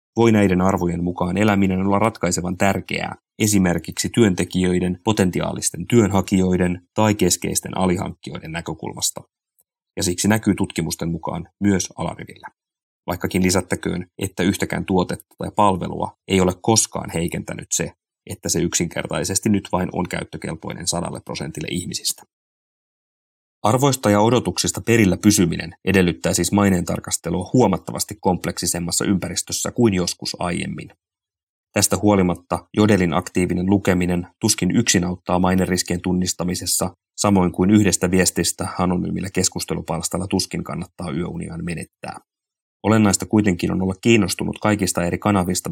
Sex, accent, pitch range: male, native, 90-100 Hz